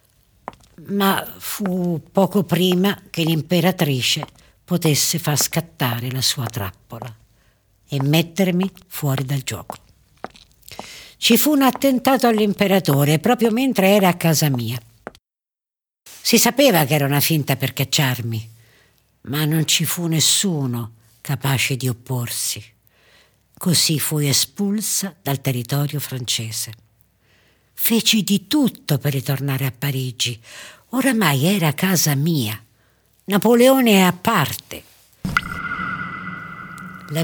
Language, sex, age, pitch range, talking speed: Italian, female, 60-79, 125-175 Hz, 105 wpm